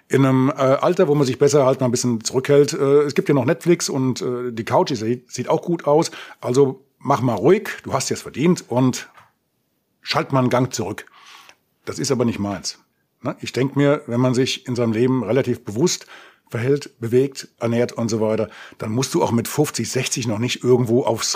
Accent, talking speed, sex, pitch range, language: German, 200 wpm, male, 115-145 Hz, German